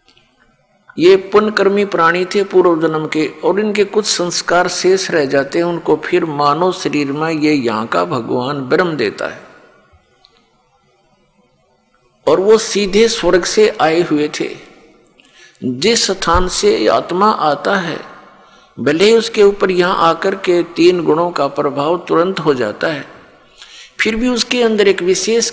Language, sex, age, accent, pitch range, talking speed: Hindi, male, 50-69, native, 155-200 Hz, 145 wpm